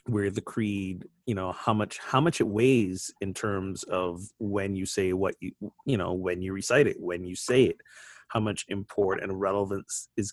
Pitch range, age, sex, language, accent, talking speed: 95-120 Hz, 30-49, male, English, American, 205 wpm